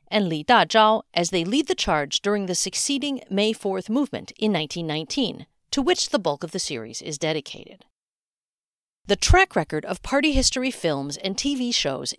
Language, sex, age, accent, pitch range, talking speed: English, female, 50-69, American, 170-250 Hz, 170 wpm